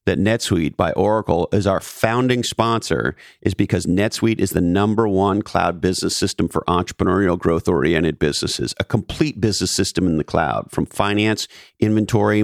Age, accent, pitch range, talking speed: 50-69, American, 95-130 Hz, 155 wpm